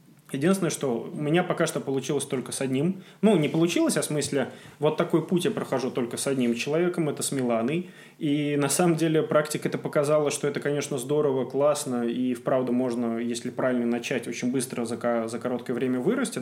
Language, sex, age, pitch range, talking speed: Russian, male, 20-39, 125-155 Hz, 190 wpm